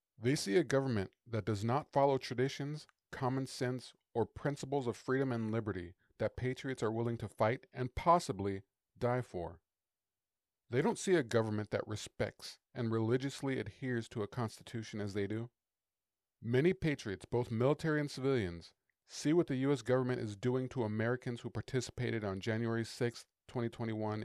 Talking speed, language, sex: 160 wpm, English, male